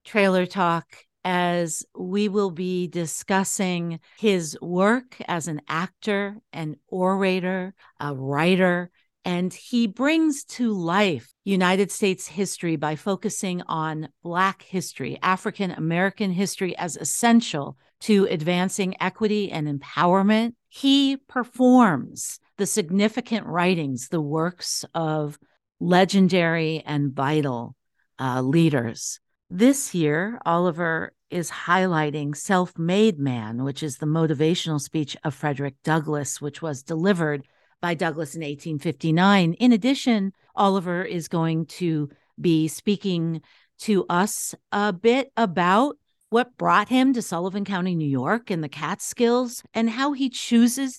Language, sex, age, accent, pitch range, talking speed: English, female, 50-69, American, 155-205 Hz, 120 wpm